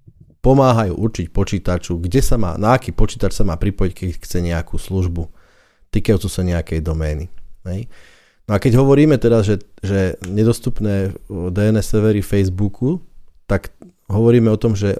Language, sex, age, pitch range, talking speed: Slovak, male, 30-49, 90-110 Hz, 150 wpm